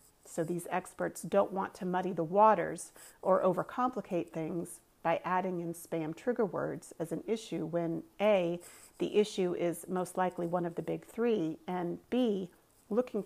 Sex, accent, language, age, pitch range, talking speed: female, American, English, 40-59, 175-210 Hz, 165 wpm